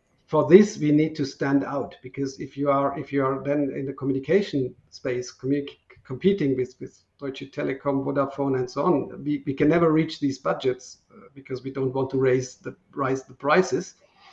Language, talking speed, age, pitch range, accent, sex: English, 195 wpm, 50-69, 130-155 Hz, German, male